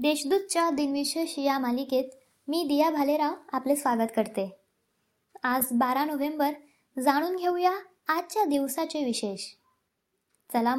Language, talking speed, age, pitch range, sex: Marathi, 105 wpm, 20-39, 260-315 Hz, male